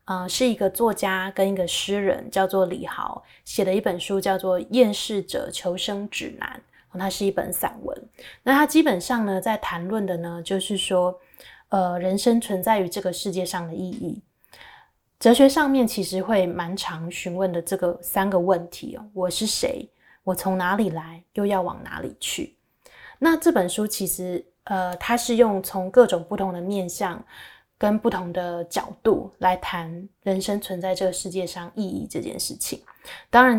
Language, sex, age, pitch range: Chinese, female, 20-39, 180-220 Hz